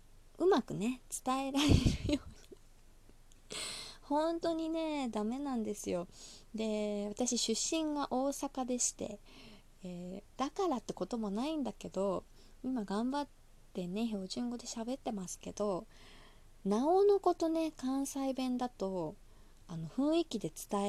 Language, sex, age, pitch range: Japanese, female, 20-39, 205-270 Hz